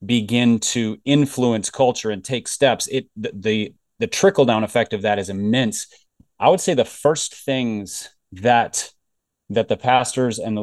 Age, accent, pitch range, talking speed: 30-49, American, 110-130 Hz, 170 wpm